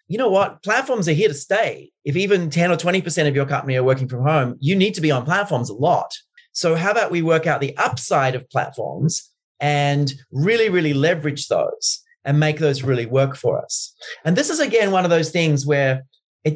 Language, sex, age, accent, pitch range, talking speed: English, male, 30-49, Australian, 145-185 Hz, 215 wpm